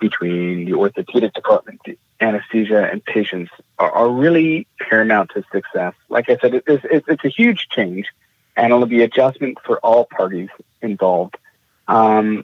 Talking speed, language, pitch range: 140 wpm, English, 105-140 Hz